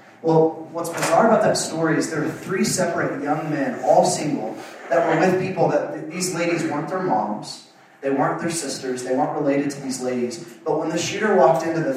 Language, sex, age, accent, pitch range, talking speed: English, male, 30-49, American, 150-185 Hz, 215 wpm